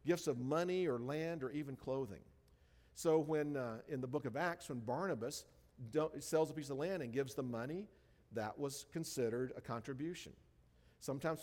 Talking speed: 175 wpm